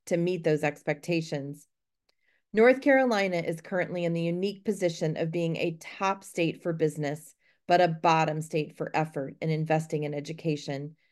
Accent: American